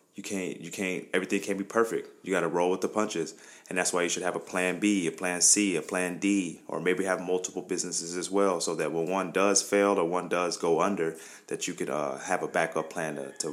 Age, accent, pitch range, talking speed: 20-39, American, 85-100 Hz, 255 wpm